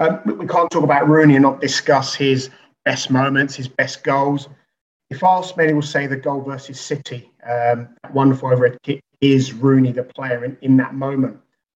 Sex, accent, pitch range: male, British, 135-165 Hz